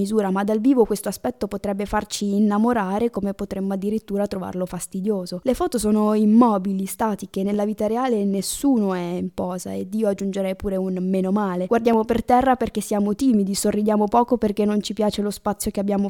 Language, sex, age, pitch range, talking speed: Italian, female, 20-39, 195-220 Hz, 185 wpm